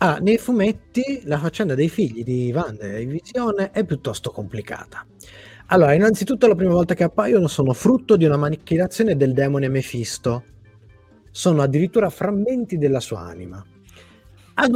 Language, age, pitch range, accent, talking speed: Italian, 30-49, 120-185 Hz, native, 140 wpm